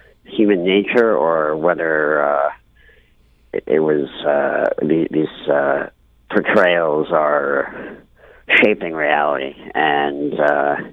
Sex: male